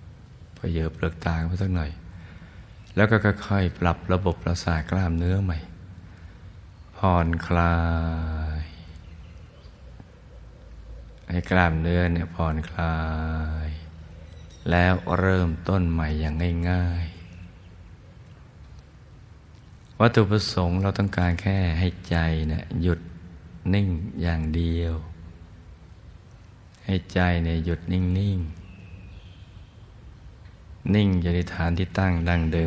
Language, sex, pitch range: Thai, male, 80-95 Hz